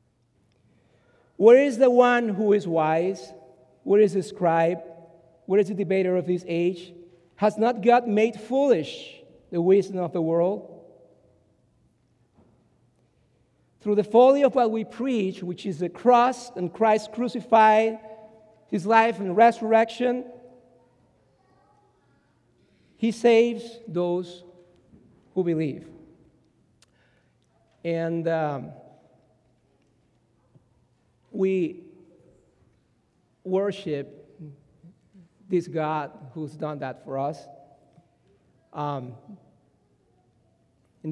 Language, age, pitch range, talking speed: English, 50-69, 145-205 Hz, 95 wpm